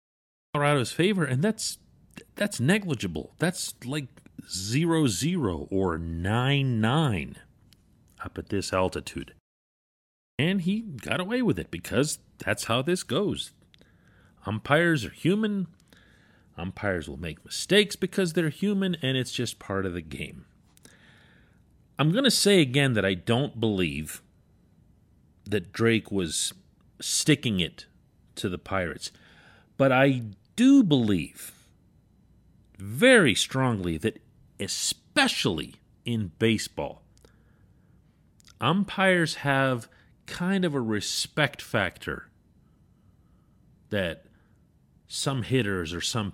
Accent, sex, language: American, male, English